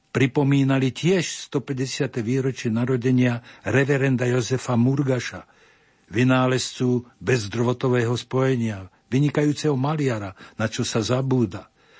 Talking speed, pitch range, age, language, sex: 85 wpm, 115-140 Hz, 60-79, Slovak, male